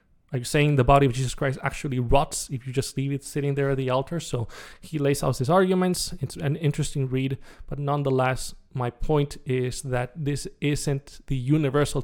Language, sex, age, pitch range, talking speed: English, male, 20-39, 125-145 Hz, 200 wpm